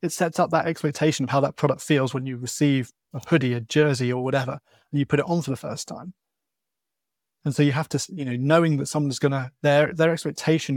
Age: 30-49